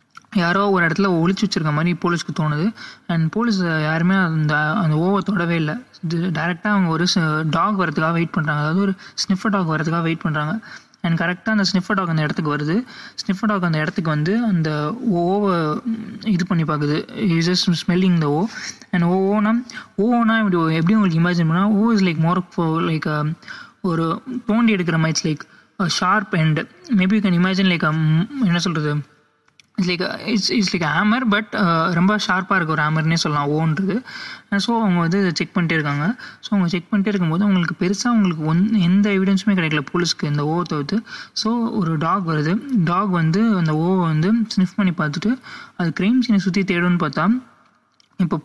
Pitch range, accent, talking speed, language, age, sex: 165-205 Hz, native, 170 wpm, Tamil, 20-39, male